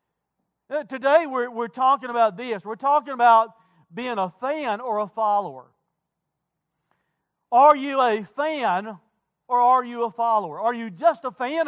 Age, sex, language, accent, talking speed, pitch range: 50-69, male, English, American, 150 wpm, 210-255 Hz